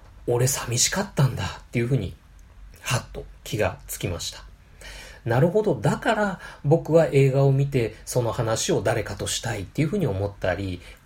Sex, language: male, Japanese